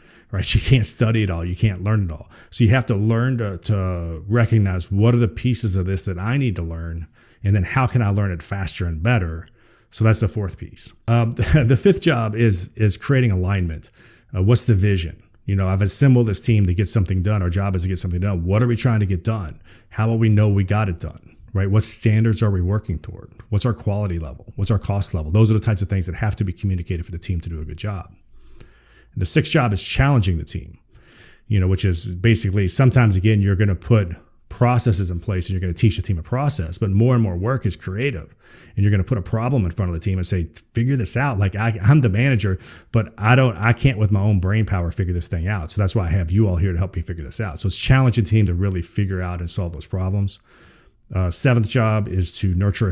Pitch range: 95-115 Hz